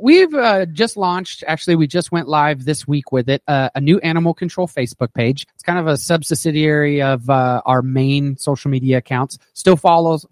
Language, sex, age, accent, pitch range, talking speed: English, male, 30-49, American, 135-175 Hz, 200 wpm